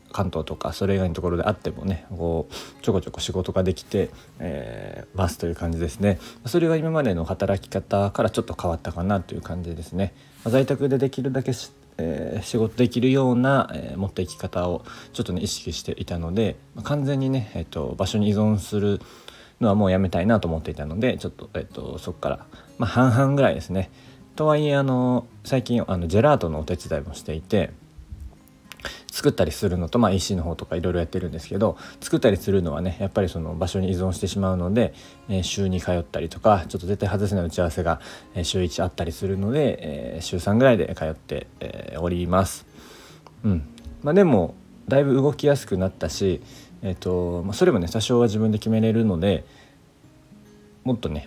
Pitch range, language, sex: 90-115 Hz, Japanese, male